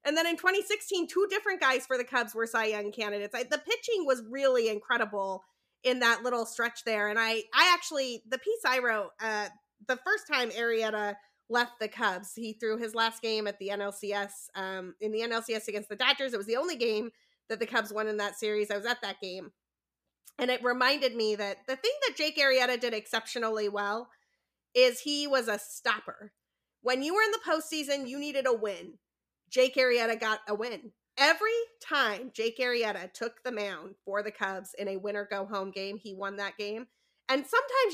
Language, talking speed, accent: English, 200 wpm, American